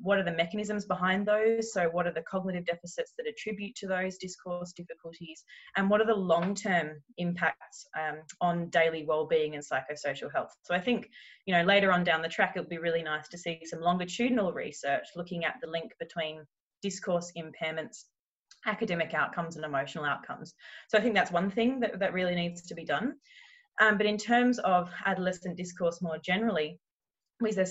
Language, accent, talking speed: English, Australian, 185 wpm